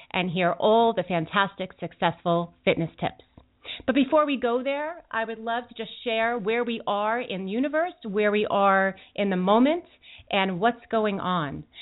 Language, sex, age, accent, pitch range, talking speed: English, female, 30-49, American, 180-240 Hz, 180 wpm